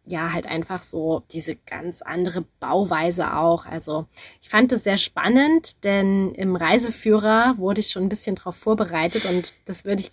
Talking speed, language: 170 wpm, German